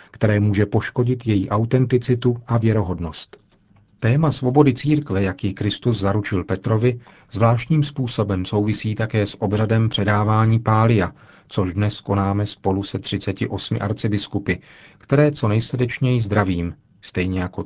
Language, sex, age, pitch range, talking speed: Czech, male, 40-59, 100-125 Hz, 120 wpm